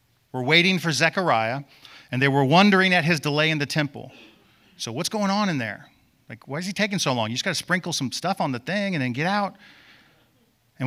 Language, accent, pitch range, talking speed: English, American, 120-160 Hz, 225 wpm